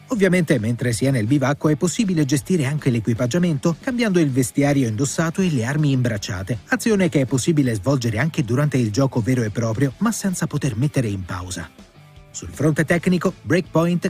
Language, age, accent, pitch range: Italian, 30-49, native, 125-175 Hz